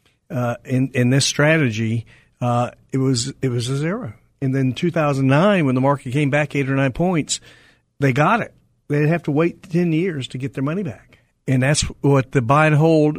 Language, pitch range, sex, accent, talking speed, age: English, 125-155 Hz, male, American, 205 wpm, 50-69